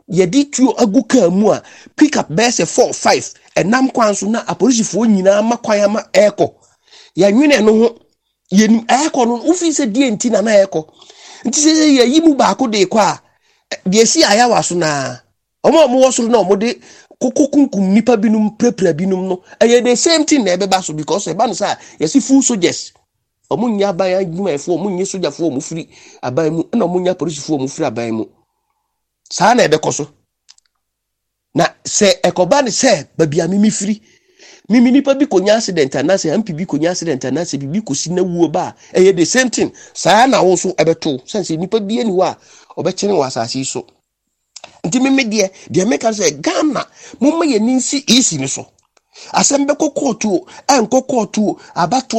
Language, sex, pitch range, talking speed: English, male, 175-255 Hz, 175 wpm